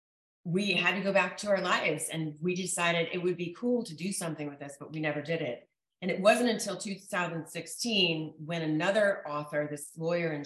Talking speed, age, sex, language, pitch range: 205 wpm, 30-49, female, English, 155-200 Hz